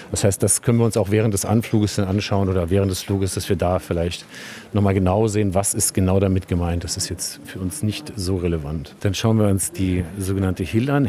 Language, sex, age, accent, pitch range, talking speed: German, male, 50-69, German, 90-110 Hz, 235 wpm